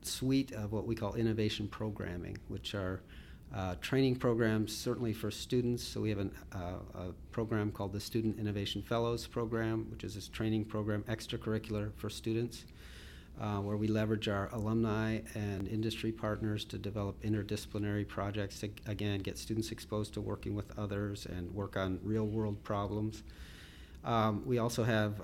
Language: English